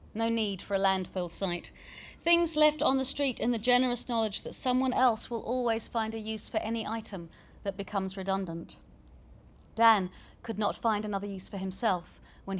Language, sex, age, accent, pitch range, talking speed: English, female, 40-59, British, 190-230 Hz, 180 wpm